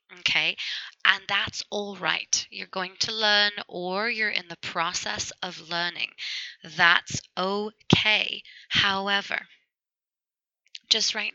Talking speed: 110 wpm